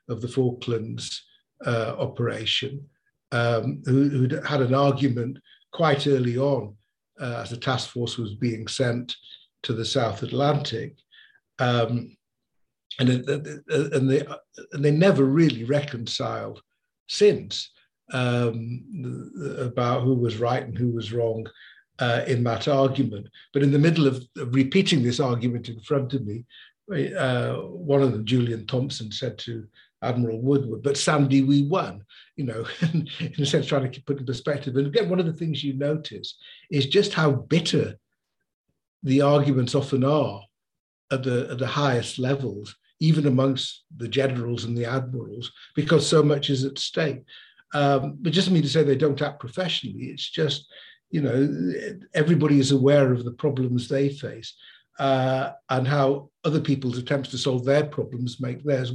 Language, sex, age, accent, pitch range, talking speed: English, male, 50-69, British, 120-145 Hz, 155 wpm